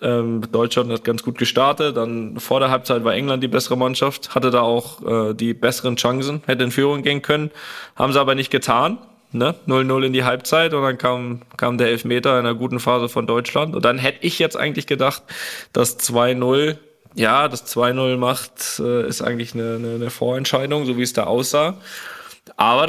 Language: German